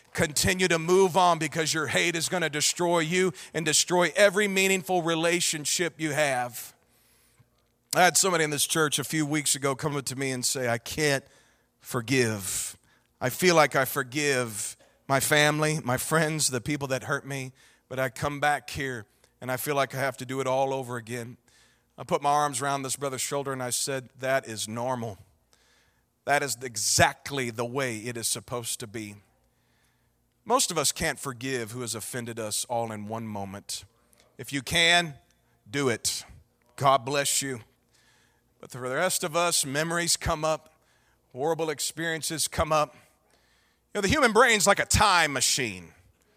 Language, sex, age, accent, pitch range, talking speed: English, male, 40-59, American, 125-165 Hz, 175 wpm